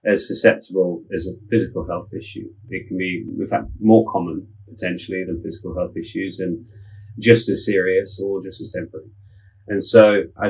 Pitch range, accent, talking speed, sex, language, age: 95-115 Hz, British, 170 wpm, male, English, 30-49